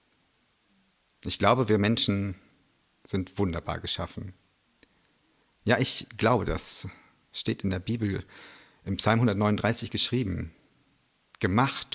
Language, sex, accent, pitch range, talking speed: German, male, German, 90-110 Hz, 100 wpm